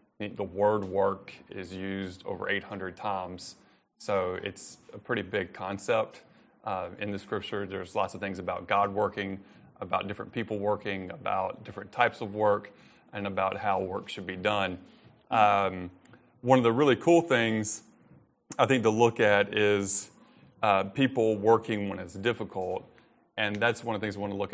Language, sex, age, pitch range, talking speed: English, male, 30-49, 100-110 Hz, 185 wpm